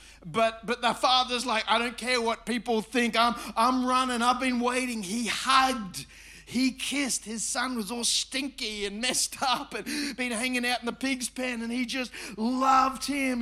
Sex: male